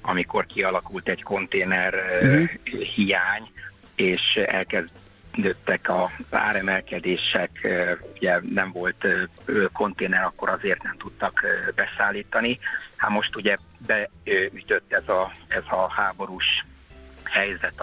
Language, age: Hungarian, 50-69